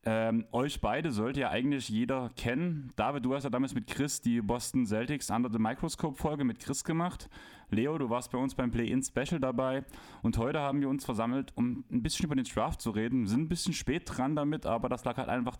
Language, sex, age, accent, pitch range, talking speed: German, male, 10-29, German, 110-135 Hz, 230 wpm